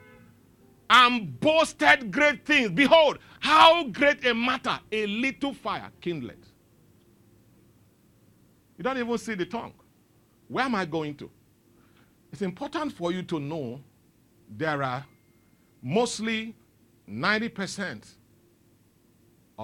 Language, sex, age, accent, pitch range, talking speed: English, male, 50-69, Nigerian, 115-195 Hz, 105 wpm